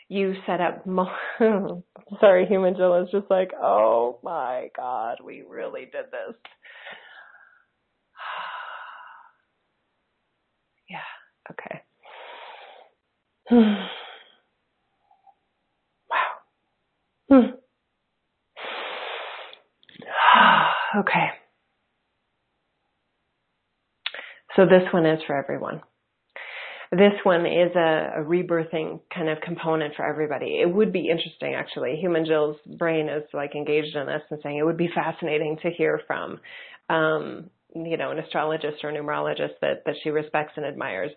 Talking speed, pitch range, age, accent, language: 105 wpm, 155-200 Hz, 30-49, American, English